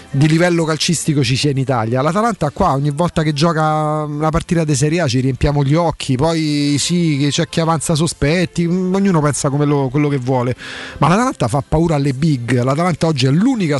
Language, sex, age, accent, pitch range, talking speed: Italian, male, 30-49, native, 135-175 Hz, 195 wpm